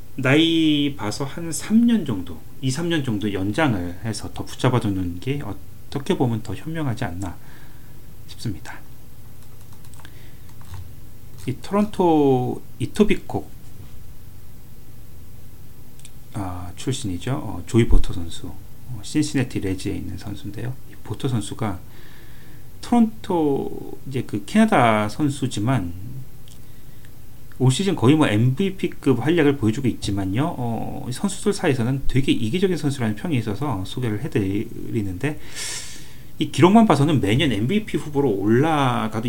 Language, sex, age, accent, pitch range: Korean, male, 40-59, native, 110-145 Hz